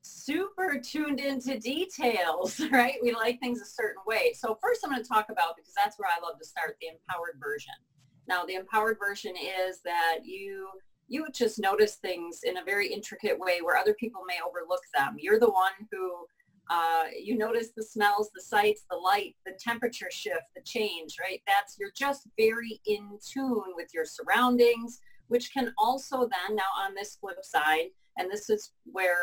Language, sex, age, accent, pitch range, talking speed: English, female, 30-49, American, 195-285 Hz, 185 wpm